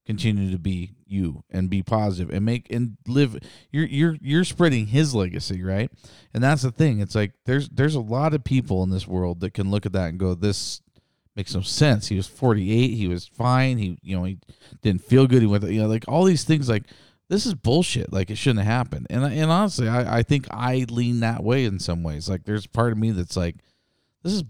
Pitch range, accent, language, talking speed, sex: 95-130 Hz, American, English, 235 wpm, male